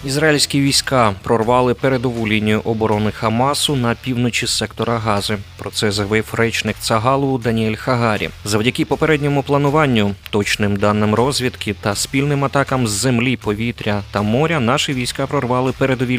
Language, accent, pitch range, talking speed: Ukrainian, native, 105-135 Hz, 135 wpm